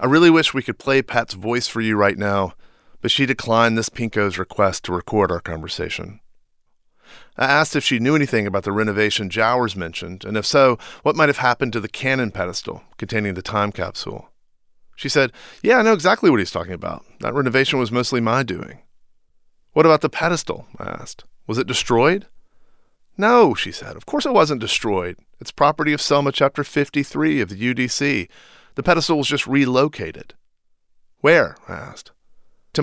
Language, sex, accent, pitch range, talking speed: English, male, American, 105-140 Hz, 180 wpm